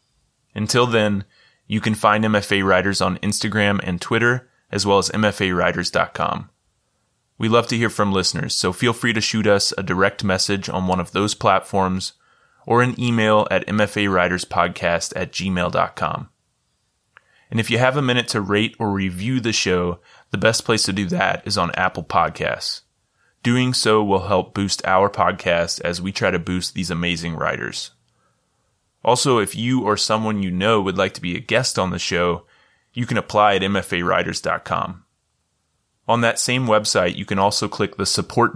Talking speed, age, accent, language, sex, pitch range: 170 wpm, 20-39, American, English, male, 90-110 Hz